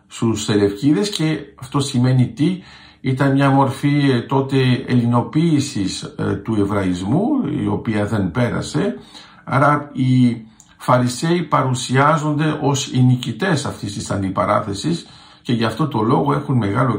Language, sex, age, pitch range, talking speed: Greek, male, 50-69, 110-145 Hz, 115 wpm